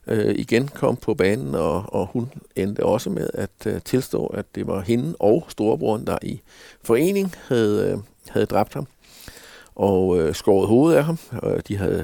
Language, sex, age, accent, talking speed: Danish, male, 60-79, native, 185 wpm